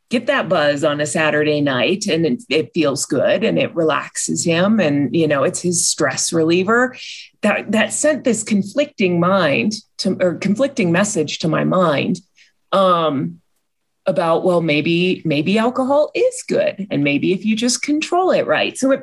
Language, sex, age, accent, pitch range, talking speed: English, female, 30-49, American, 160-230 Hz, 165 wpm